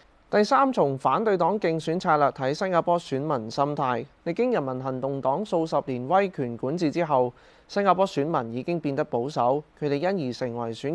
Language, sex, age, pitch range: Chinese, male, 20-39, 130-170 Hz